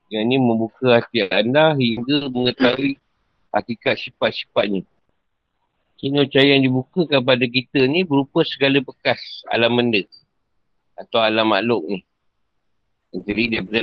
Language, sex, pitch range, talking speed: Malay, male, 105-125 Hz, 125 wpm